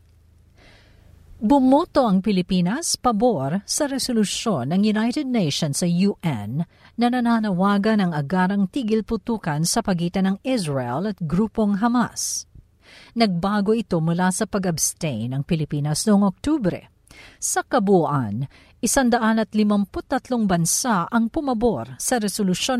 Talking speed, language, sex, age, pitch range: 110 wpm, Filipino, female, 50-69, 150-225 Hz